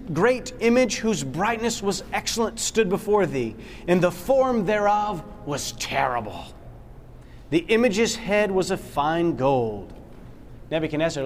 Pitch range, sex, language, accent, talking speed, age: 130-200 Hz, male, English, American, 125 wpm, 30-49